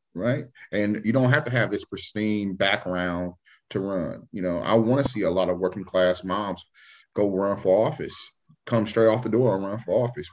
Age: 30-49